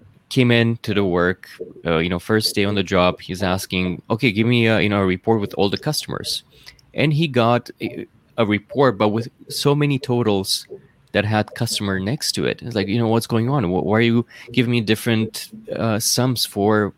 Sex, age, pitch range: male, 20-39, 95-120 Hz